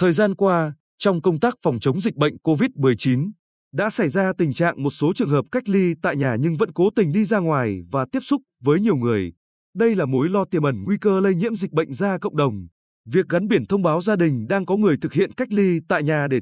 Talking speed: 250 wpm